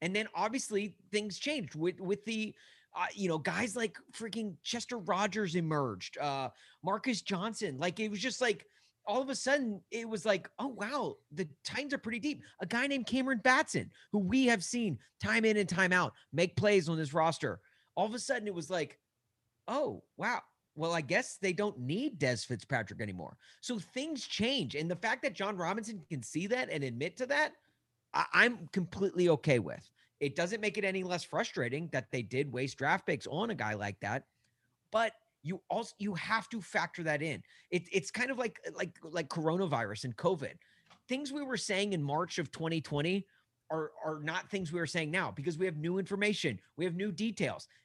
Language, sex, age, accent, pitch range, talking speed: English, male, 30-49, American, 150-220 Hz, 200 wpm